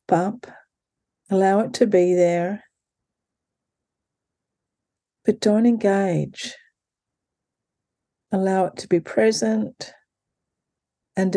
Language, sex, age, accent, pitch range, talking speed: English, female, 50-69, Australian, 170-215 Hz, 80 wpm